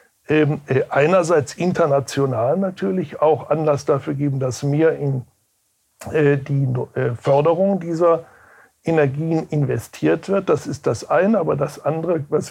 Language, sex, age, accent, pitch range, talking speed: German, male, 60-79, German, 145-180 Hz, 115 wpm